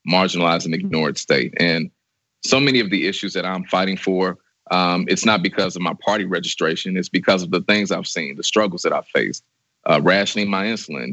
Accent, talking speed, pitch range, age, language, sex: American, 205 wpm, 90-110 Hz, 30-49, English, male